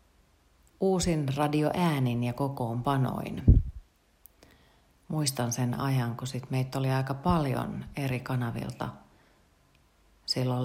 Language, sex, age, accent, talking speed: Finnish, female, 40-59, native, 85 wpm